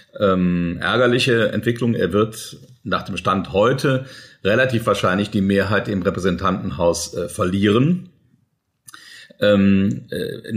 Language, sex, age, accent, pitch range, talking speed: German, male, 40-59, German, 95-120 Hz, 110 wpm